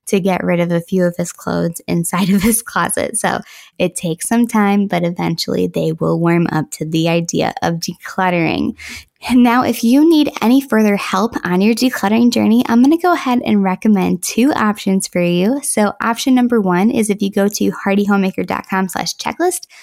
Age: 10-29